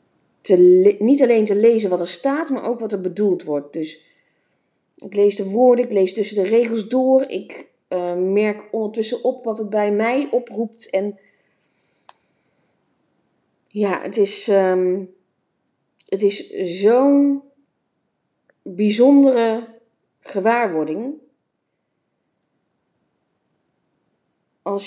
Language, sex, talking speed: Dutch, female, 105 wpm